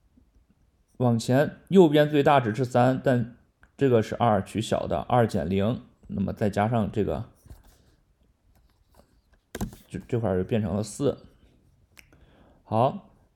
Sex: male